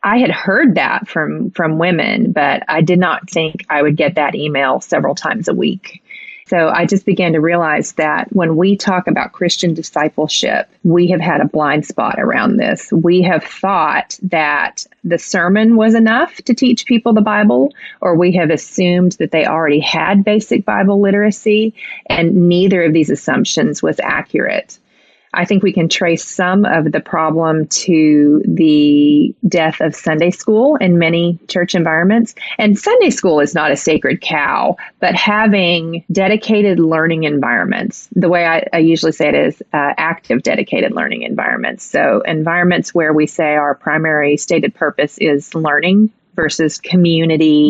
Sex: female